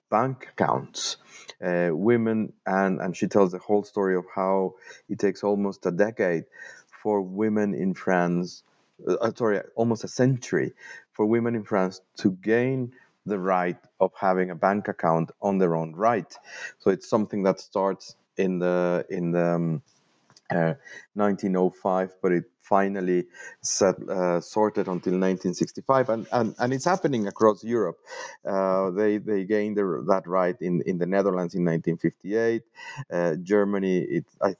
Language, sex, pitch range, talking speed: English, male, 90-110 Hz, 160 wpm